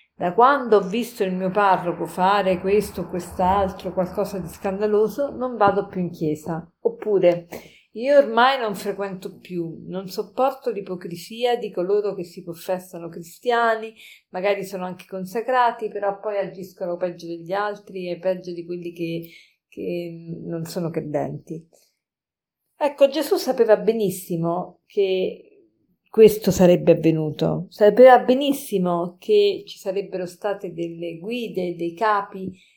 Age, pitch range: 50-69, 180-230 Hz